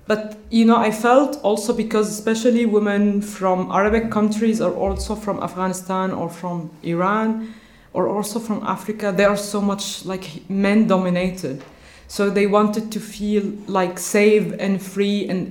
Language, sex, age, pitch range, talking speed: English, female, 20-39, 180-210 Hz, 155 wpm